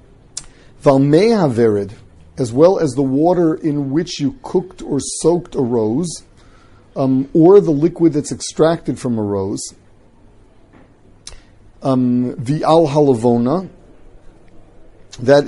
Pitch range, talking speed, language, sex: 115-145 Hz, 110 wpm, English, male